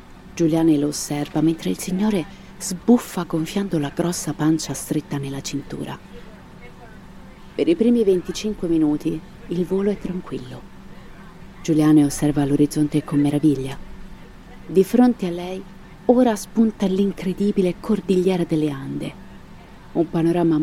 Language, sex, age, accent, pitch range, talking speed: Italian, female, 30-49, native, 150-190 Hz, 115 wpm